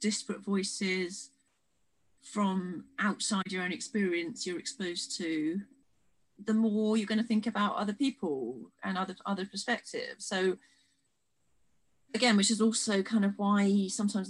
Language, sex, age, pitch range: English, female, 30-49, 180-245 Hz